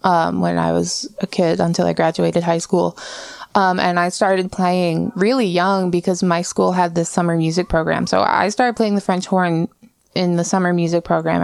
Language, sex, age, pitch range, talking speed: English, female, 20-39, 175-205 Hz, 200 wpm